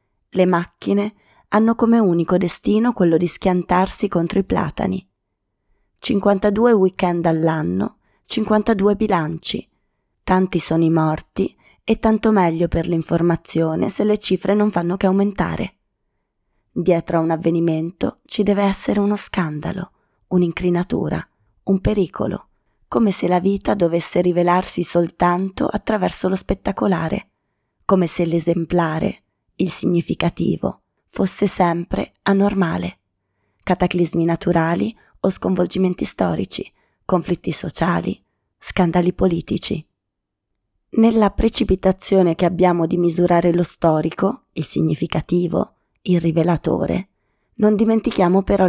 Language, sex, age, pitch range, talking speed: Italian, female, 20-39, 165-195 Hz, 105 wpm